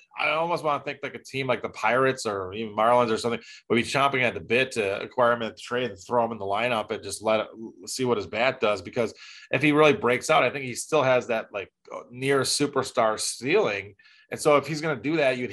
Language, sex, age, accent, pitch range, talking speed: English, male, 20-39, American, 110-130 Hz, 260 wpm